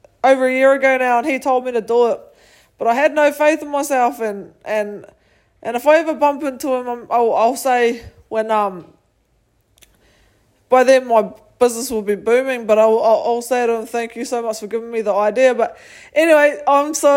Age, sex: 20-39, female